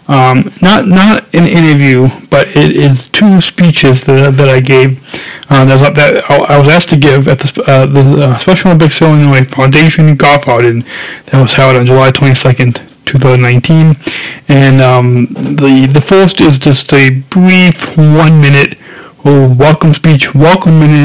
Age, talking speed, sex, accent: 20-39, 170 wpm, male, American